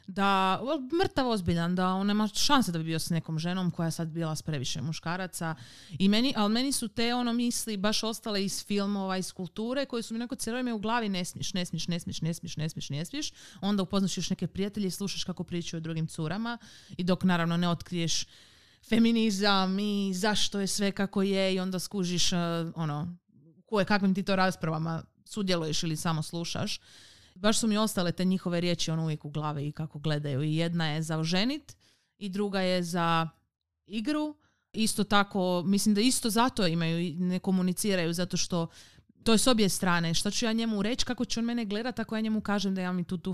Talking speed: 205 wpm